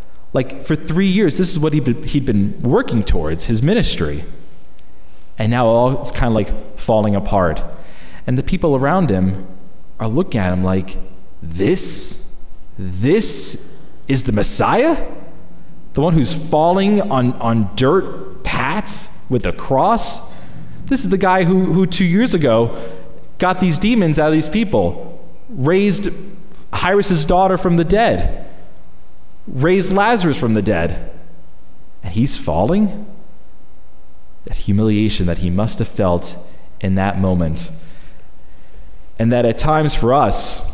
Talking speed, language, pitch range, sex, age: 140 wpm, English, 100-155 Hz, male, 30-49